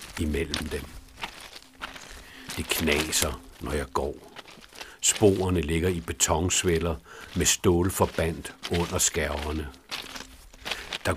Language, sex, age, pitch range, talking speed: Danish, male, 60-79, 80-90 Hz, 90 wpm